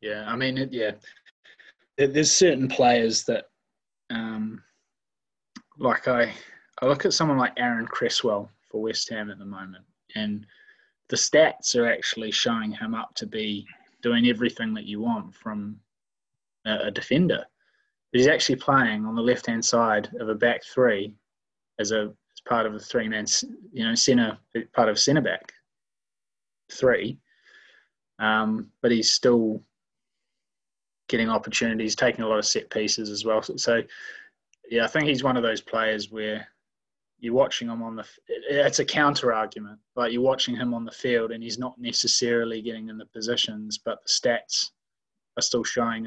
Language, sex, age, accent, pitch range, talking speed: English, male, 20-39, Australian, 110-125 Hz, 170 wpm